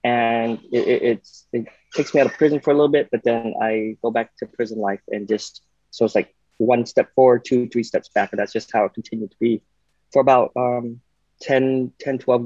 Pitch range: 110-125 Hz